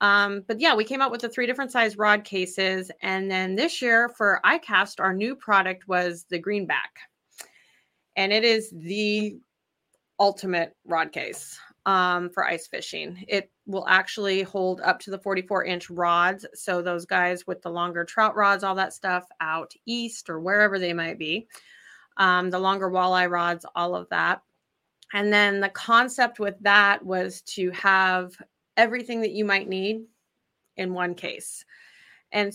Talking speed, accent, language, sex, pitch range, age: 165 wpm, American, English, female, 180-215 Hz, 30-49